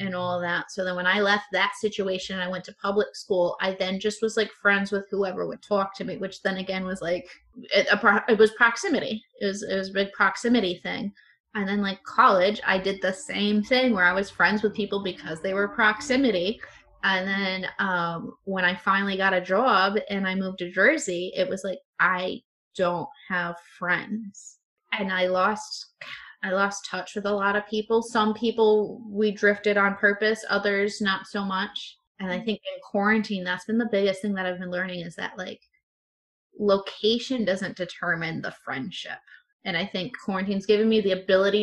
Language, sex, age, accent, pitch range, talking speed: English, female, 20-39, American, 185-215 Hz, 200 wpm